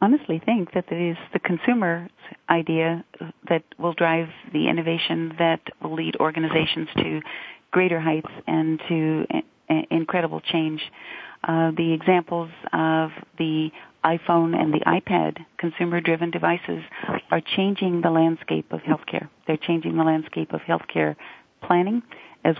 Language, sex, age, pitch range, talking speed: English, female, 40-59, 150-170 Hz, 130 wpm